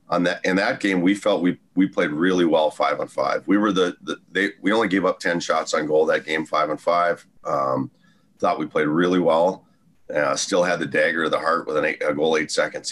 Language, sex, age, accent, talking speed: English, male, 30-49, American, 250 wpm